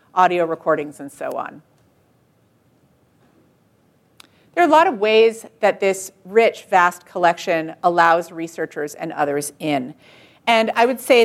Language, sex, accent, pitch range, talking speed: English, female, American, 165-225 Hz, 135 wpm